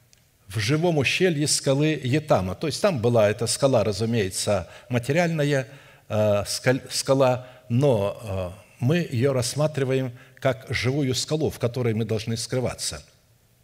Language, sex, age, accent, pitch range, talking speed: Russian, male, 60-79, native, 120-145 Hz, 125 wpm